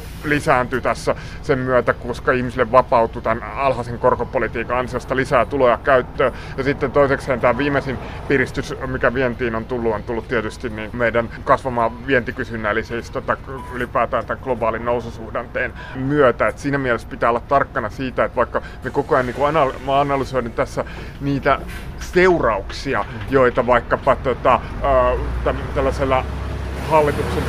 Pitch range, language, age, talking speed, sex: 120-145 Hz, Finnish, 30-49, 135 wpm, male